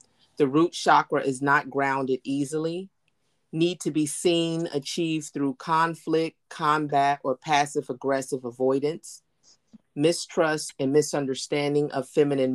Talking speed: 115 wpm